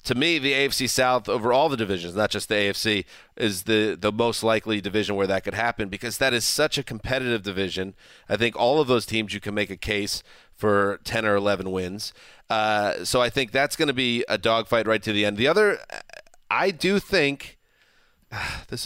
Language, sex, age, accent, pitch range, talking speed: English, male, 30-49, American, 105-135 Hz, 210 wpm